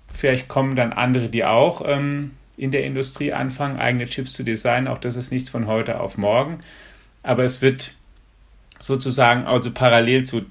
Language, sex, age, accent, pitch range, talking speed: German, male, 40-59, German, 125-140 Hz, 170 wpm